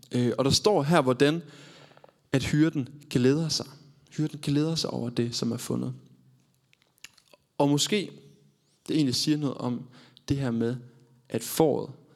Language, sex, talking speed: Danish, male, 145 wpm